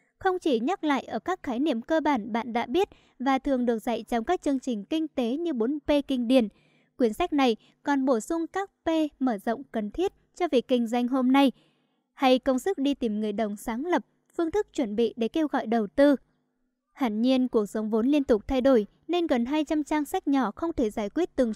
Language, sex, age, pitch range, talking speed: Vietnamese, male, 10-29, 235-300 Hz, 230 wpm